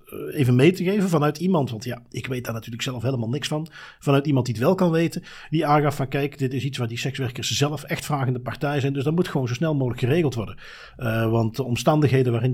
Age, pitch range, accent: 40-59, 120-155 Hz, Dutch